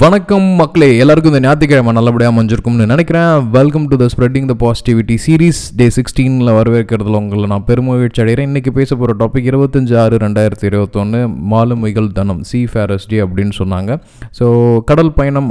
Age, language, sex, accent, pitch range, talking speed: 20-39, Tamil, male, native, 105-120 Hz, 150 wpm